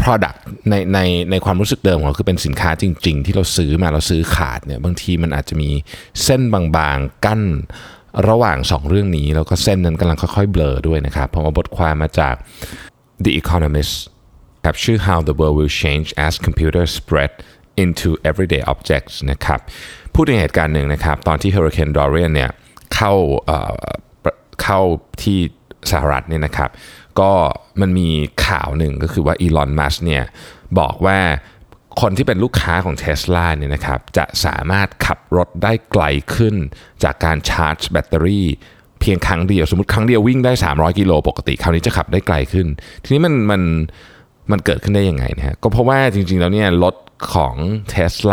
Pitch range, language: 75-100 Hz, Thai